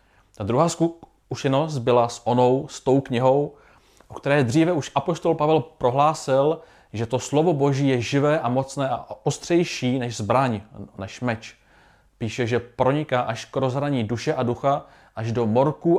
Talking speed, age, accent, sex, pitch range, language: 160 wpm, 30-49, native, male, 115-145 Hz, Czech